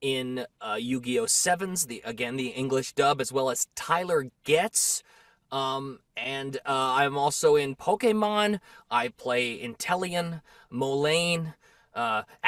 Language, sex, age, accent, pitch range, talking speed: English, male, 20-39, American, 150-205 Hz, 125 wpm